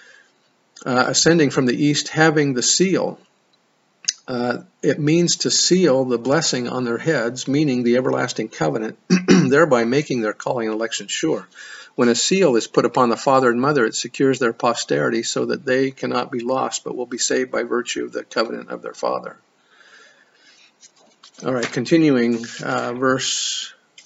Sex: male